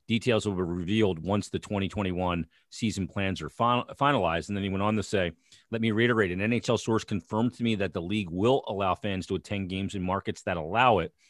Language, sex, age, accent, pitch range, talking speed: English, male, 40-59, American, 90-110 Hz, 220 wpm